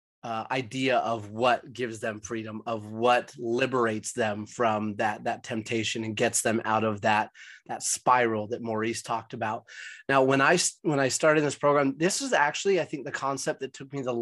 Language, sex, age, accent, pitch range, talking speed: English, male, 30-49, American, 115-150 Hz, 195 wpm